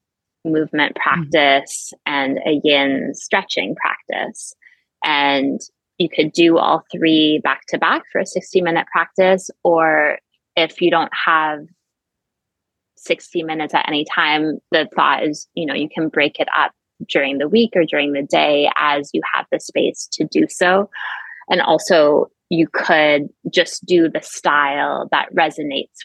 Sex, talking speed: female, 150 wpm